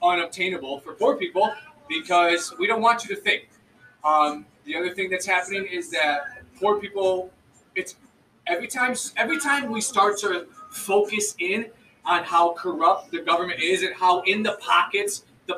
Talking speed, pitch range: 165 wpm, 175-235 Hz